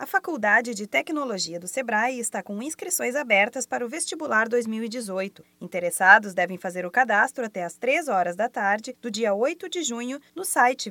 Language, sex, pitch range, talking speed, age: Portuguese, female, 200-270 Hz, 175 wpm, 20-39